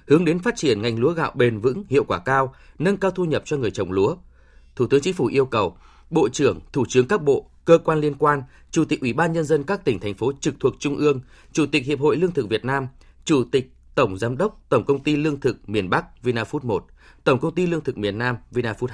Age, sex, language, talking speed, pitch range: 20-39, male, Vietnamese, 255 wpm, 115-170 Hz